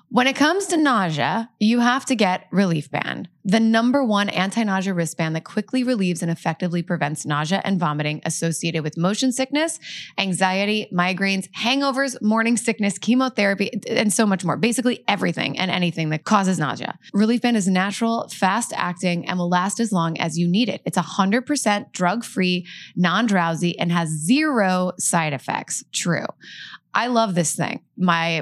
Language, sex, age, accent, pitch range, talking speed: English, female, 20-39, American, 165-210 Hz, 160 wpm